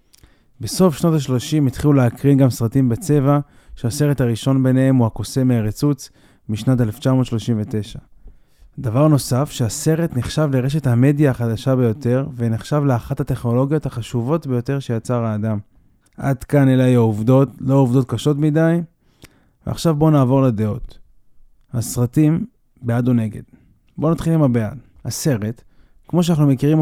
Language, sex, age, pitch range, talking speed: Hebrew, male, 20-39, 115-145 Hz, 130 wpm